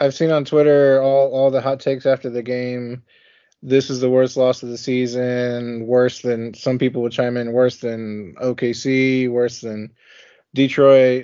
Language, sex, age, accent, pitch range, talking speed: English, male, 20-39, American, 115-130 Hz, 175 wpm